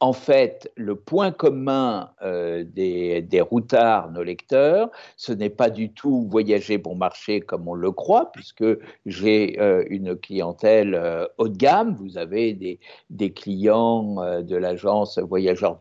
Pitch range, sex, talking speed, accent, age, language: 100-130 Hz, male, 155 wpm, French, 60-79, French